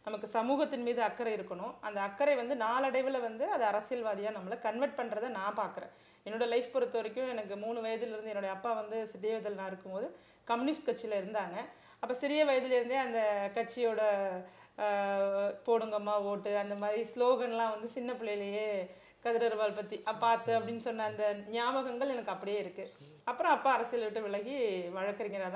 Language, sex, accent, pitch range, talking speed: Tamil, female, native, 205-245 Hz, 145 wpm